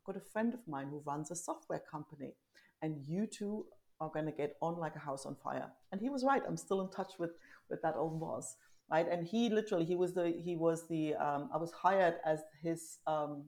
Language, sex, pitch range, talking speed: English, female, 155-195 Hz, 235 wpm